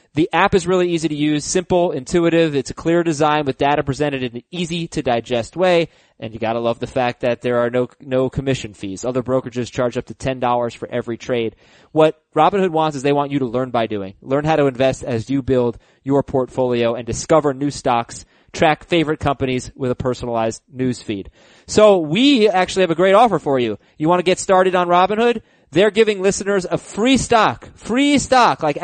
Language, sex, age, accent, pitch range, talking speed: English, male, 30-49, American, 130-180 Hz, 210 wpm